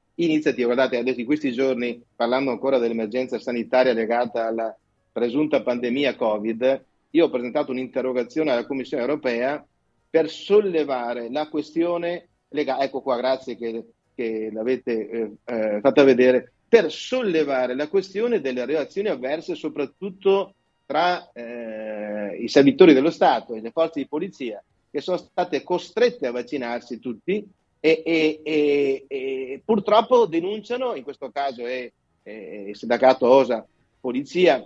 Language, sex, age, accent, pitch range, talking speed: Italian, male, 40-59, native, 125-170 Hz, 135 wpm